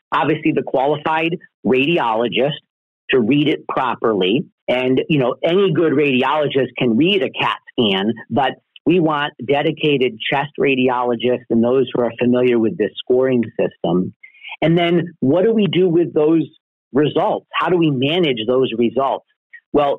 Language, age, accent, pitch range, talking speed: English, 40-59, American, 125-170 Hz, 150 wpm